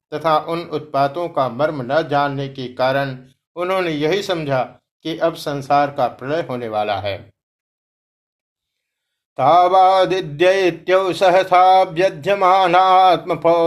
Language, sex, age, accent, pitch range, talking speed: Hindi, male, 50-69, native, 135-170 Hz, 95 wpm